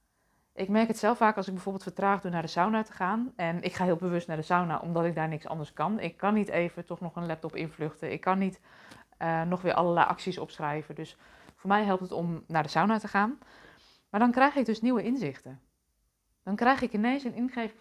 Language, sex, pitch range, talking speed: Dutch, female, 165-210 Hz, 240 wpm